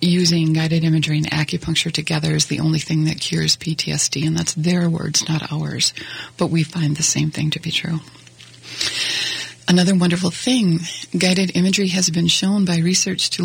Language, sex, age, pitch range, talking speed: English, female, 30-49, 155-180 Hz, 175 wpm